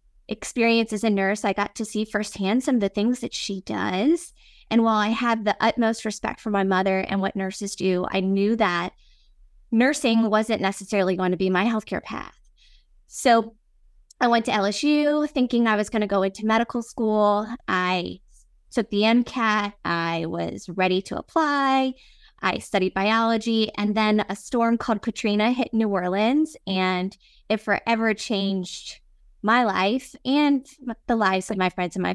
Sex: female